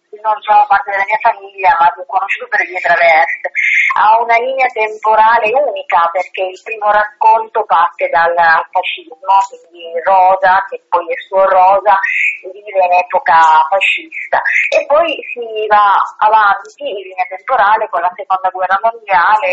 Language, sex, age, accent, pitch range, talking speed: Italian, female, 30-49, native, 175-220 Hz, 150 wpm